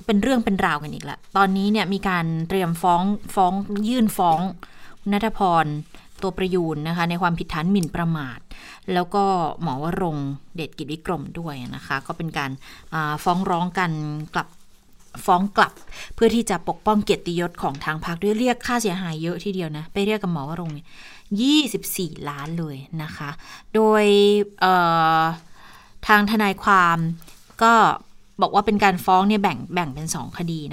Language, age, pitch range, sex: Thai, 20-39, 160-200 Hz, female